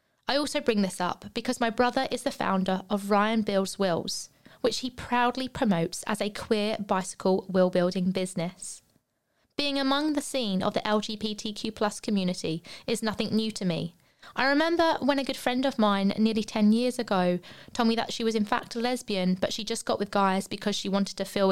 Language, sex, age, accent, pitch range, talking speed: English, female, 20-39, British, 195-245 Hz, 200 wpm